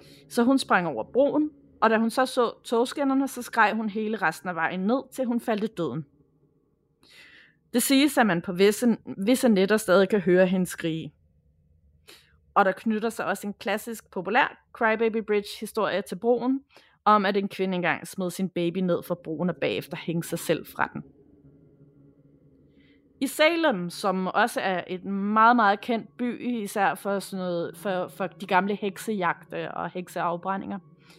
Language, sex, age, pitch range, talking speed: Danish, female, 30-49, 175-230 Hz, 170 wpm